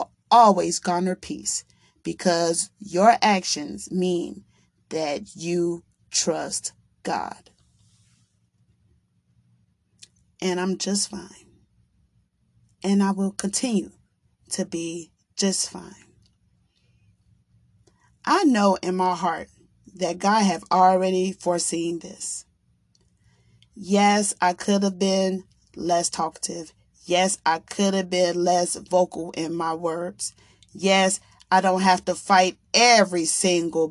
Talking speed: 105 wpm